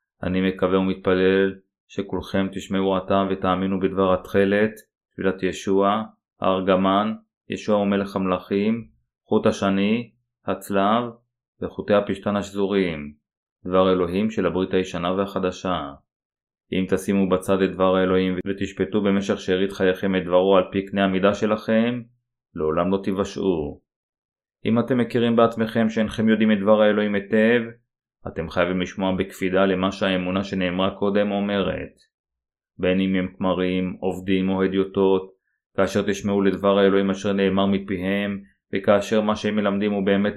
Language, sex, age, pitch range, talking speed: Hebrew, male, 20-39, 95-105 Hz, 130 wpm